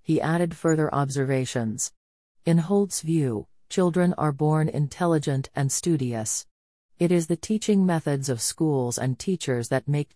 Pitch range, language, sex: 125-160 Hz, English, female